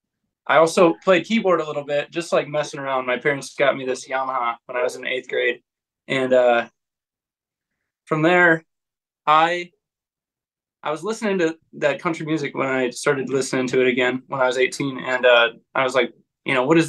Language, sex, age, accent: English, male, 20-39, American